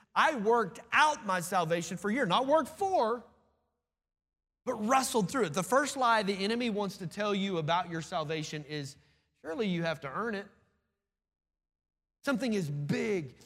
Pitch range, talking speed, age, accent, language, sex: 170-235 Hz, 165 wpm, 30-49, American, English, male